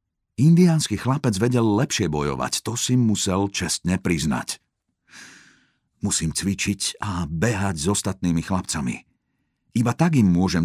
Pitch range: 85-115 Hz